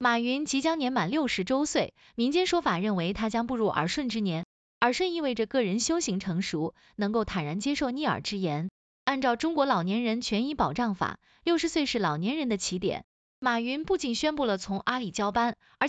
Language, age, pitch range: Chinese, 20-39, 210-290 Hz